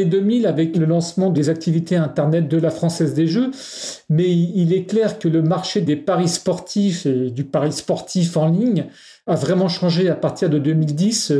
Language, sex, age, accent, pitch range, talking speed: French, male, 40-59, French, 155-190 Hz, 185 wpm